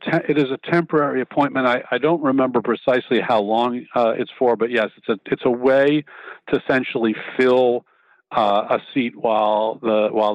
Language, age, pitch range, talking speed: English, 50-69, 115-150 Hz, 180 wpm